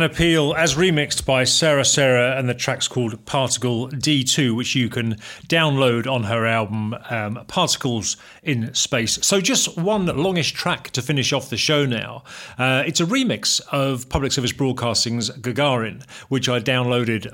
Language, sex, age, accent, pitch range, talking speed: English, male, 40-59, British, 120-155 Hz, 160 wpm